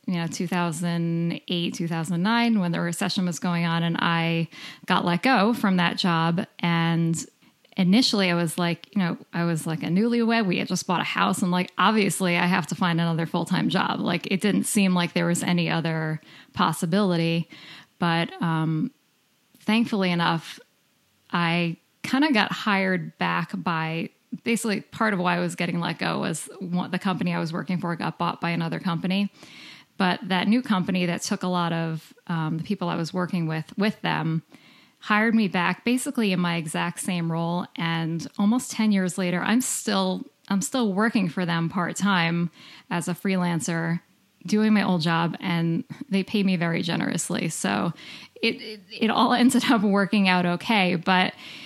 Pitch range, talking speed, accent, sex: 170-205 Hz, 180 wpm, American, female